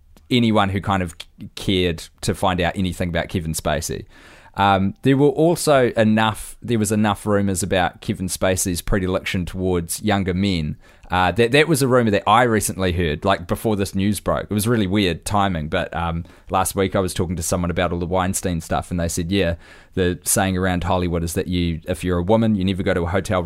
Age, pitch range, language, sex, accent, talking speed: 20-39, 85-105 Hz, English, male, Australian, 210 wpm